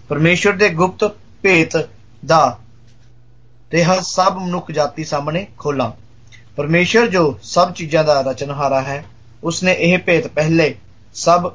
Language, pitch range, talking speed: Hindi, 115-155 Hz, 115 wpm